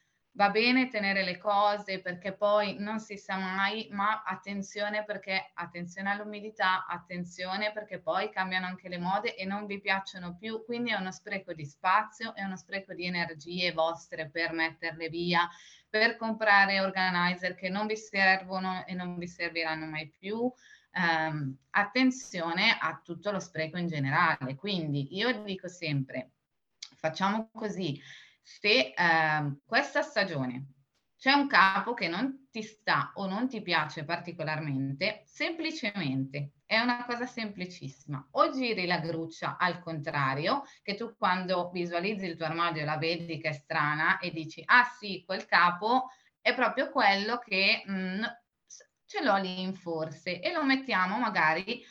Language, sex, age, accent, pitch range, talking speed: Italian, female, 20-39, native, 165-215 Hz, 145 wpm